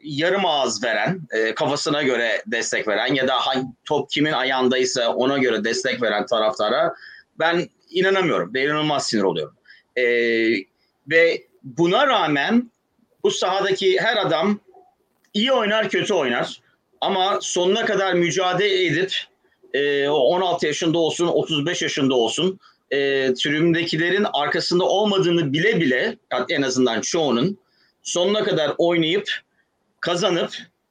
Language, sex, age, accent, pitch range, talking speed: Turkish, male, 40-59, native, 140-185 Hz, 110 wpm